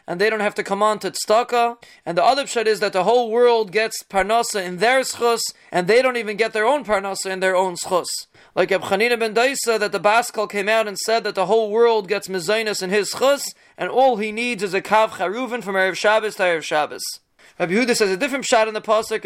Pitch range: 190-225 Hz